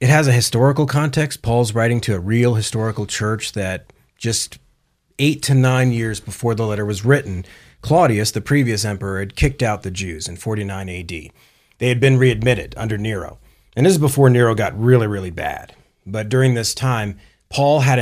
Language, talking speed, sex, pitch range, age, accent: English, 185 wpm, male, 105-135 Hz, 30-49, American